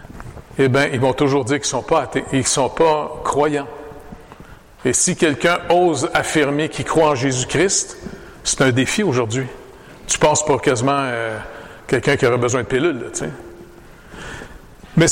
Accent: Canadian